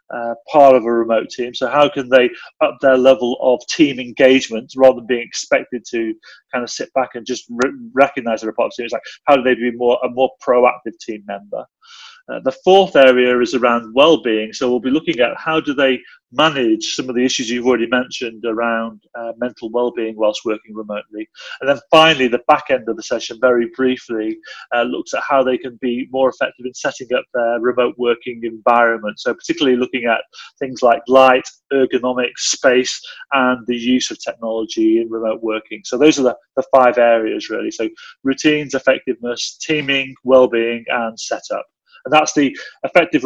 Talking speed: 195 wpm